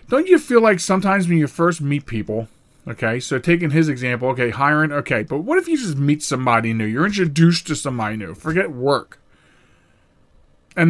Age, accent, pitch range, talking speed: 40-59, American, 135-190 Hz, 185 wpm